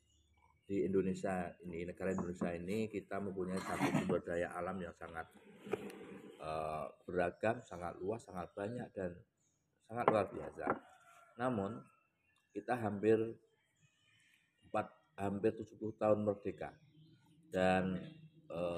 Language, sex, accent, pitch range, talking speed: Indonesian, male, native, 95-130 Hz, 105 wpm